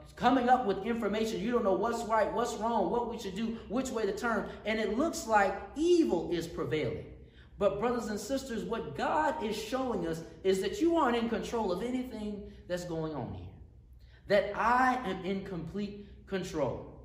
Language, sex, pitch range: English, male, 180-240 Hz